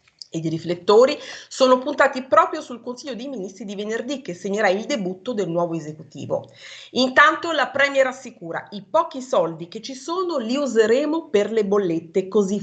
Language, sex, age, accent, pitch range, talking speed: Italian, female, 40-59, native, 190-280 Hz, 160 wpm